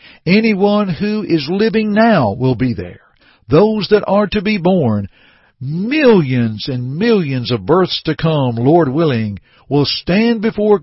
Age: 60-79